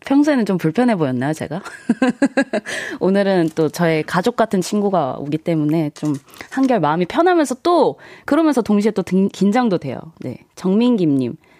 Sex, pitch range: female, 160-235 Hz